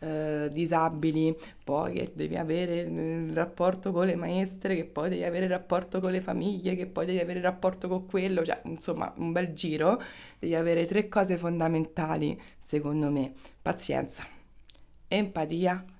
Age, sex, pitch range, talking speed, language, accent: 20-39, female, 155-185 Hz, 160 wpm, Italian, native